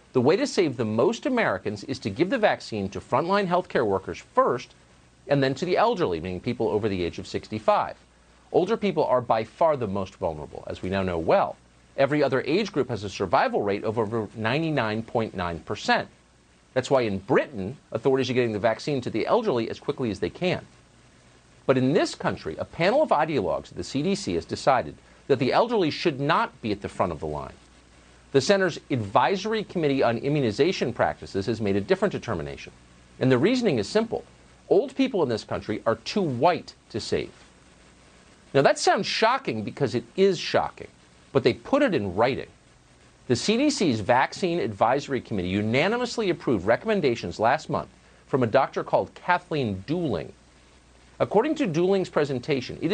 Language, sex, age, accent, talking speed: English, male, 50-69, American, 180 wpm